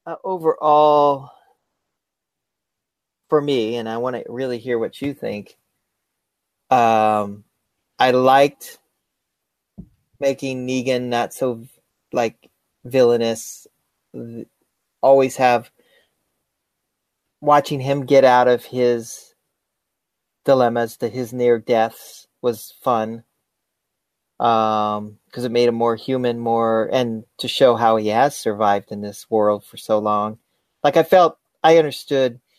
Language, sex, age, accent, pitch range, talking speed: English, male, 30-49, American, 110-135 Hz, 115 wpm